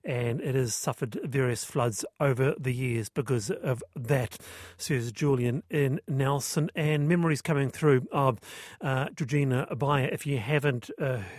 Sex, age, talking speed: male, 40-59, 150 wpm